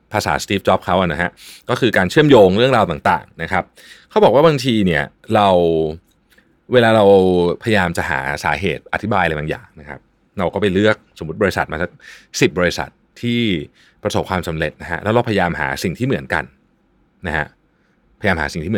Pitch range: 90-130 Hz